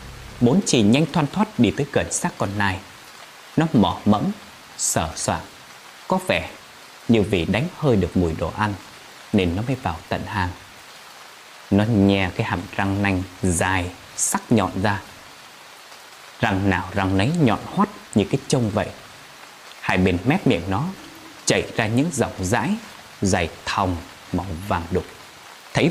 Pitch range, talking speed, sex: 95-130 Hz, 155 wpm, male